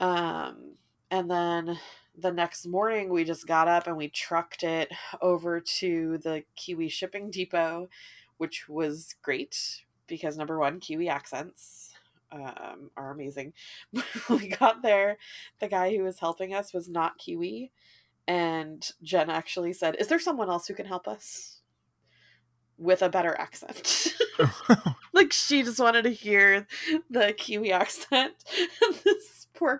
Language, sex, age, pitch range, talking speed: English, female, 20-39, 160-210 Hz, 145 wpm